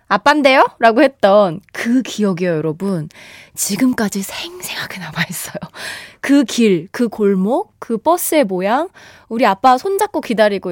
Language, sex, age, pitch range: Korean, female, 20-39, 215-340 Hz